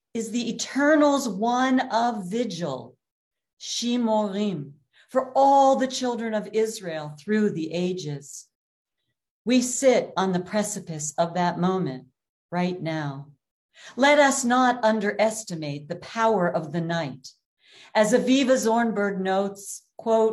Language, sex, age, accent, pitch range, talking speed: English, female, 50-69, American, 170-240 Hz, 115 wpm